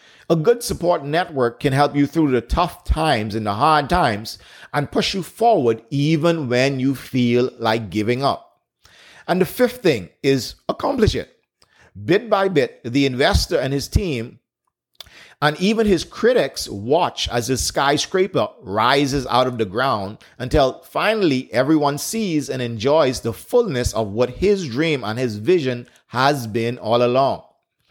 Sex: male